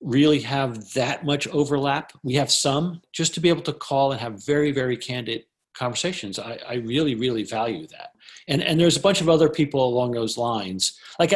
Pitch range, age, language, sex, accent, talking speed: 115-150 Hz, 40-59, English, male, American, 200 wpm